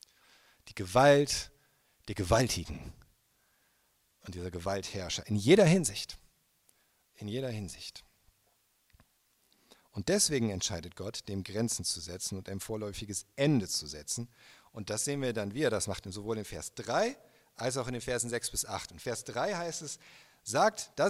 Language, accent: German, German